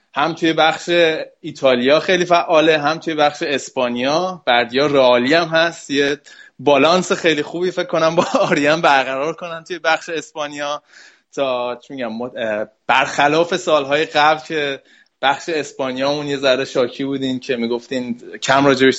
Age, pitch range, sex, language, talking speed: 20-39, 135-170 Hz, male, Persian, 140 wpm